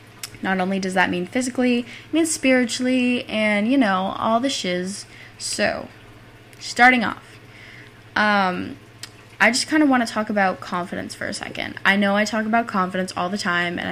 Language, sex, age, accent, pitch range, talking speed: English, female, 10-29, American, 185-235 Hz, 170 wpm